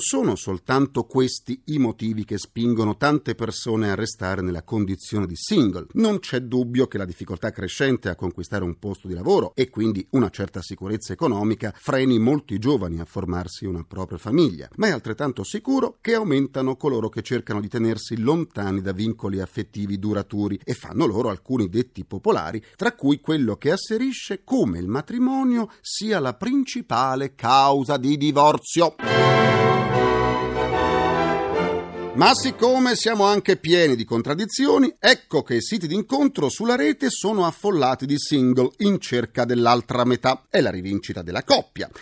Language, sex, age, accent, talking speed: Italian, male, 40-59, native, 150 wpm